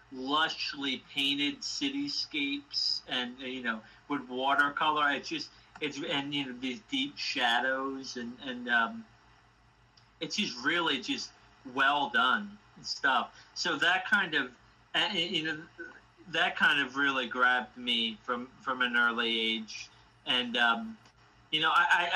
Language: English